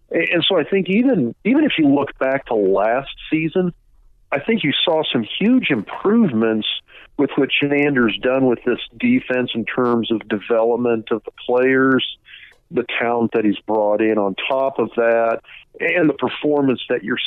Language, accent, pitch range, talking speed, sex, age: English, American, 110-130 Hz, 170 wpm, male, 50-69